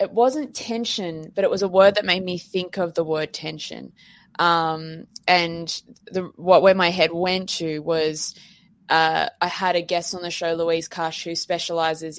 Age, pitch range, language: 20-39, 175-240 Hz, English